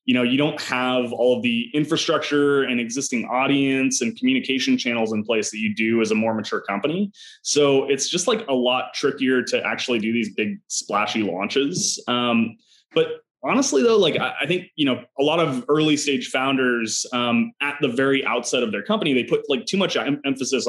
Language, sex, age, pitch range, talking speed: English, male, 20-39, 115-145 Hz, 205 wpm